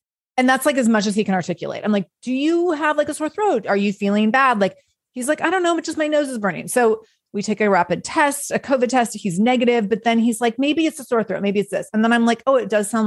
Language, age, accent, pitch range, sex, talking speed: English, 30-49, American, 205-280 Hz, female, 300 wpm